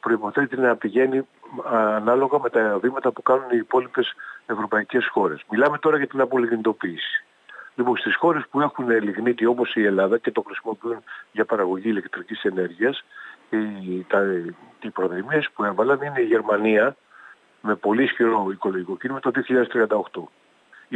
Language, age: Greek, 50-69